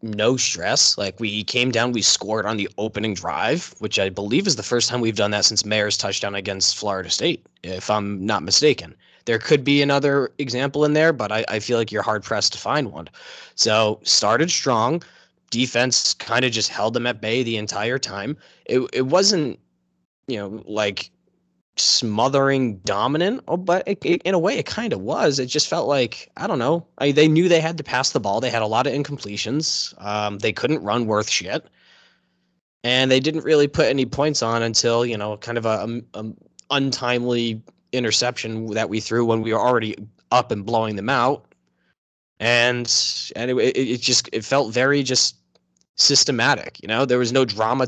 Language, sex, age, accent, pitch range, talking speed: English, male, 20-39, American, 105-130 Hz, 195 wpm